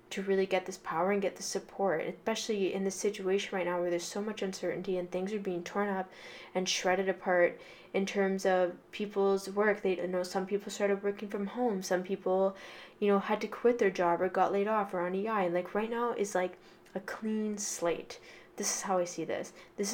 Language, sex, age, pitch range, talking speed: English, female, 10-29, 180-200 Hz, 225 wpm